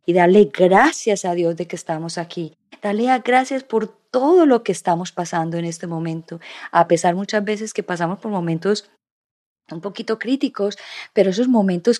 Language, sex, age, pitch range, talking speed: Spanish, female, 30-49, 190-235 Hz, 170 wpm